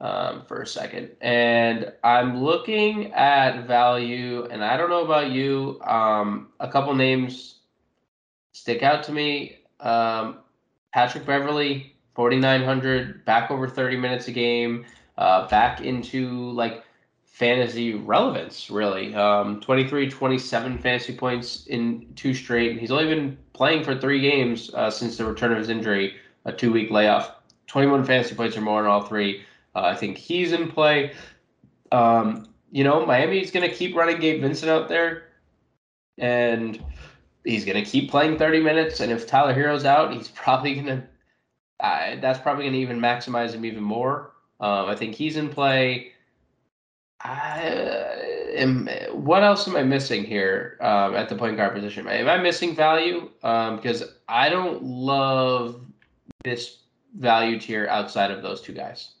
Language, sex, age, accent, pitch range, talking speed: English, male, 20-39, American, 115-140 Hz, 155 wpm